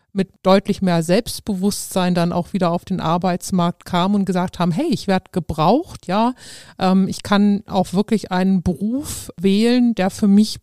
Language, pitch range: German, 180-215 Hz